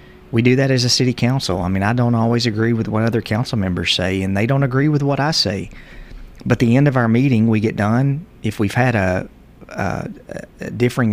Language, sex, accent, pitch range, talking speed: English, male, American, 95-120 Hz, 235 wpm